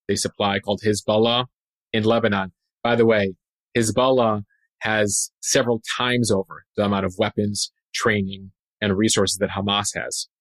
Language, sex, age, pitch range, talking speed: English, male, 30-49, 105-130 Hz, 140 wpm